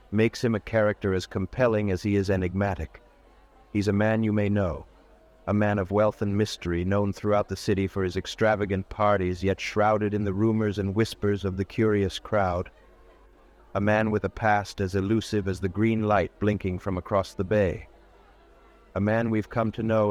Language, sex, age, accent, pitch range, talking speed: English, male, 50-69, American, 95-110 Hz, 190 wpm